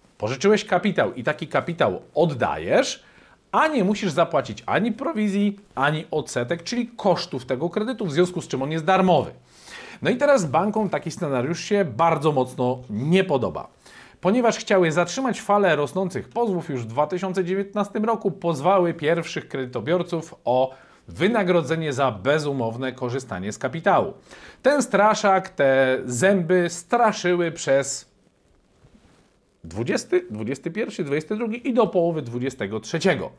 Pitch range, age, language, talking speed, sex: 140-200 Hz, 40-59, Polish, 125 wpm, male